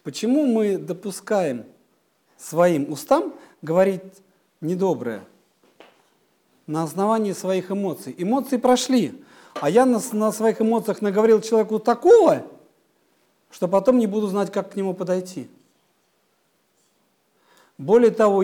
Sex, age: male, 50-69